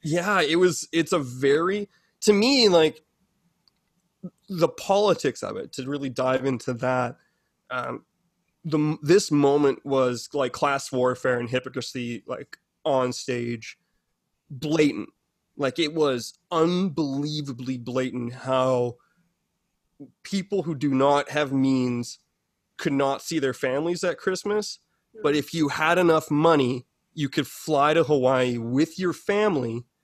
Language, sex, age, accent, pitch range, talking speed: English, male, 20-39, American, 130-175 Hz, 130 wpm